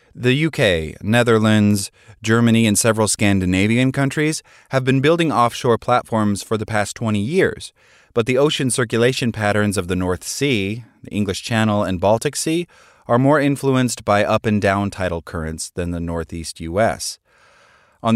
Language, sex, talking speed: English, male, 150 wpm